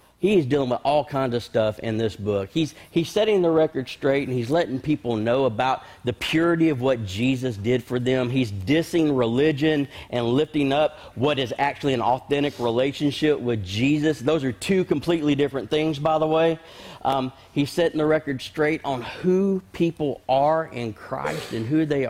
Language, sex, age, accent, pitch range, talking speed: English, male, 40-59, American, 125-150 Hz, 185 wpm